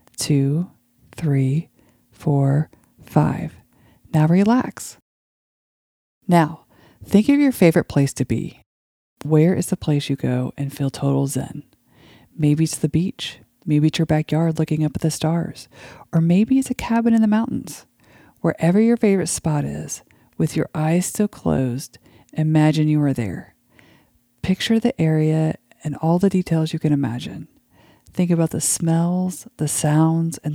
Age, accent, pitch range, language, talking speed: 40-59, American, 140-175 Hz, English, 150 wpm